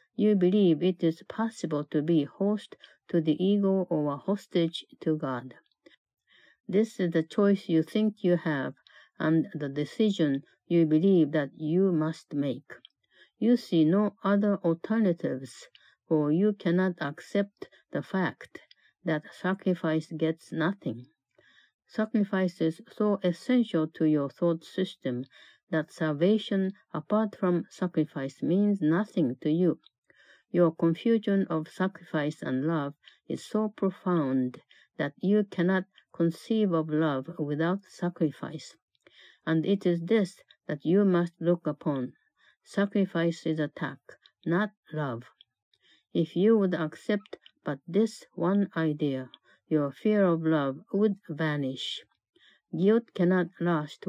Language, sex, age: Japanese, female, 60-79